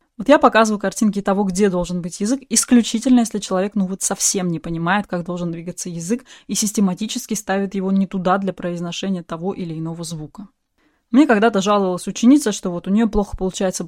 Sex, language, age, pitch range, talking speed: female, Russian, 20-39, 185-235 Hz, 185 wpm